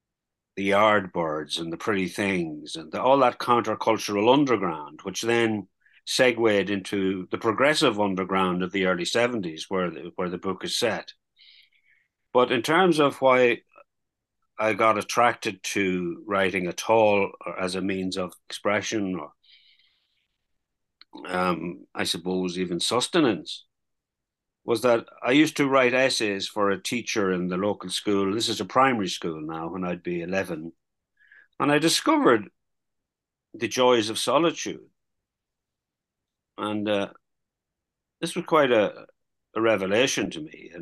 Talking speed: 140 wpm